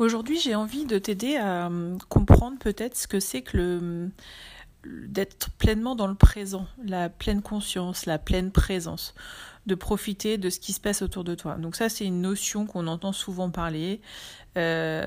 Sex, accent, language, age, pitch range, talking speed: female, French, French, 30-49, 175-215 Hz, 175 wpm